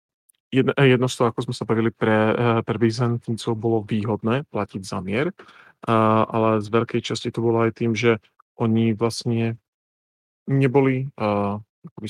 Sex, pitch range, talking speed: male, 105-120 Hz, 135 wpm